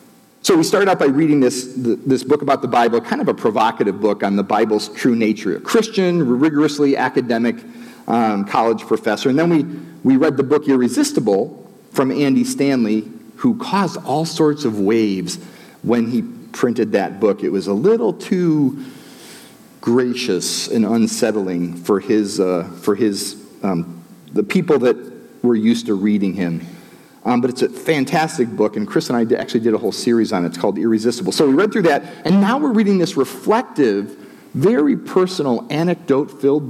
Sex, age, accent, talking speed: male, 40-59, American, 175 wpm